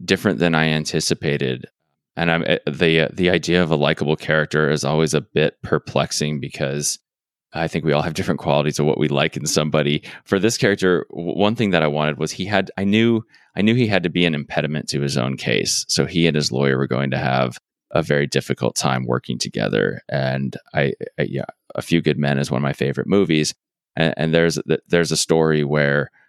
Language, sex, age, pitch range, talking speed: English, male, 20-39, 70-85 Hz, 210 wpm